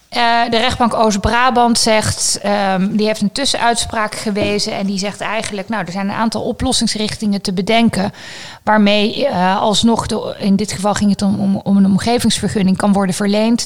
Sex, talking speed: female, 175 wpm